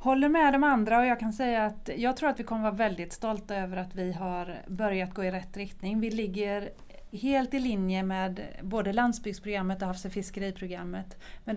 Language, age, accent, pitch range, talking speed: Swedish, 30-49, native, 190-235 Hz, 205 wpm